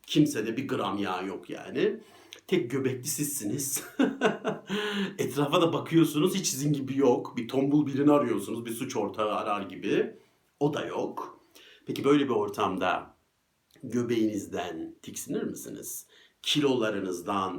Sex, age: male, 60-79